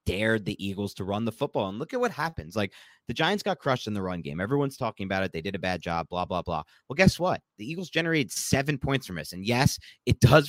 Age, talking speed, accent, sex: 30-49, 270 wpm, American, male